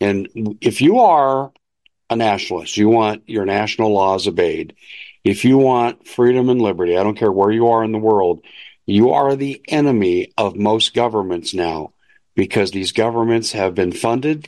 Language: English